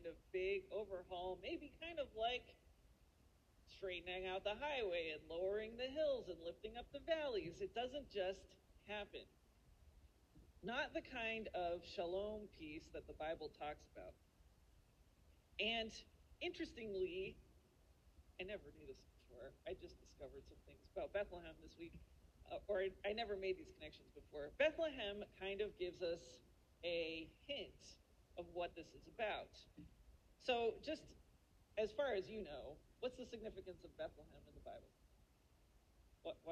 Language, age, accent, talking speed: English, 40-59, American, 145 wpm